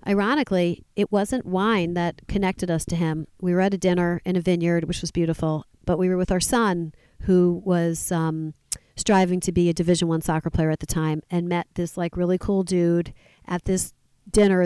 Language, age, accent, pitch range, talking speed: English, 40-59, American, 170-190 Hz, 205 wpm